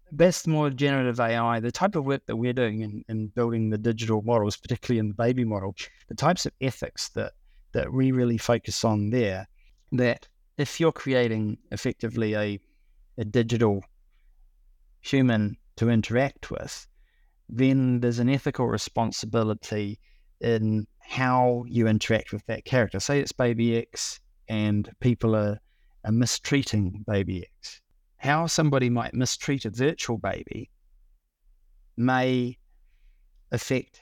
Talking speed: 135 wpm